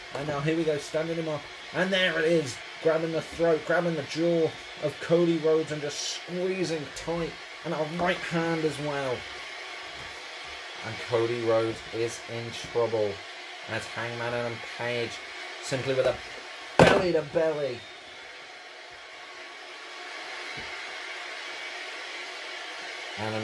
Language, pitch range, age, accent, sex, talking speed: English, 115-160 Hz, 20-39, British, male, 125 wpm